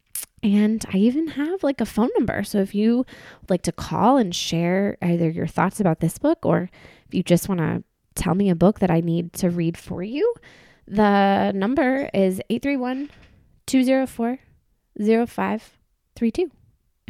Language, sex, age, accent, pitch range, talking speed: English, female, 20-39, American, 185-255 Hz, 150 wpm